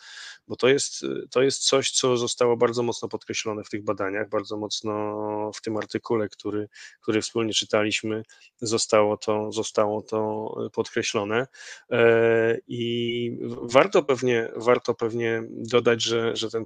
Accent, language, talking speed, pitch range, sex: native, Polish, 125 wpm, 110-120 Hz, male